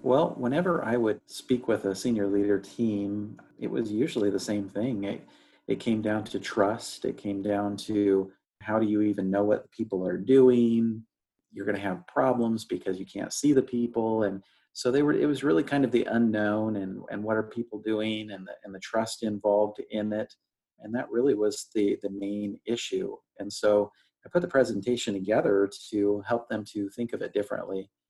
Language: English